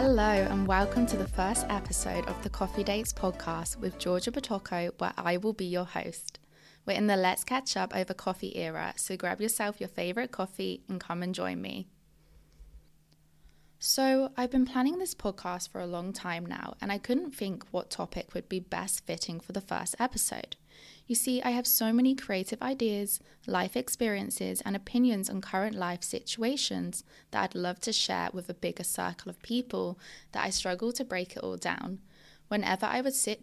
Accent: British